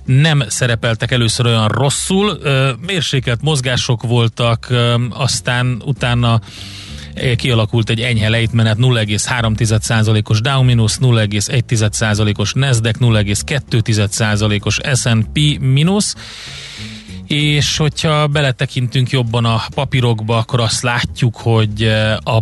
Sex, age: male, 30-49